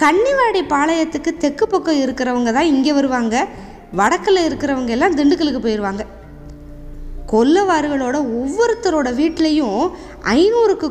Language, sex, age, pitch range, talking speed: Tamil, female, 20-39, 245-325 Hz, 95 wpm